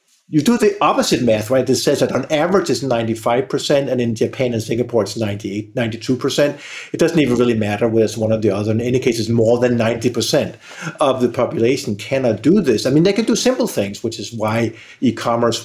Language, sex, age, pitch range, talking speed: English, male, 50-69, 110-140 Hz, 210 wpm